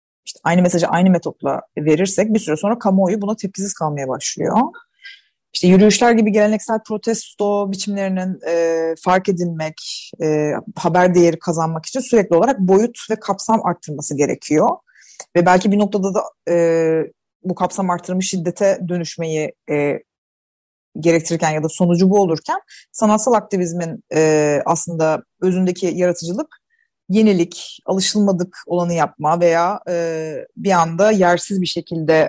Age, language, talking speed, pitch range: 30-49, Turkish, 130 wpm, 165-205 Hz